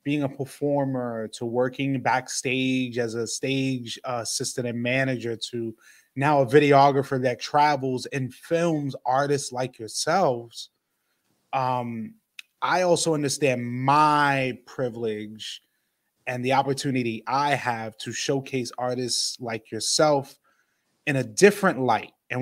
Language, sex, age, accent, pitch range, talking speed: English, male, 20-39, American, 120-145 Hz, 120 wpm